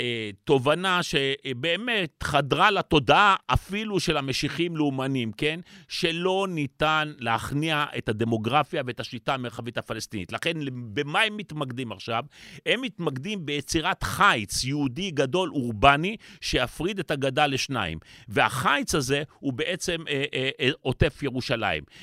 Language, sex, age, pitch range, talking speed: Hebrew, male, 40-59, 130-175 Hz, 120 wpm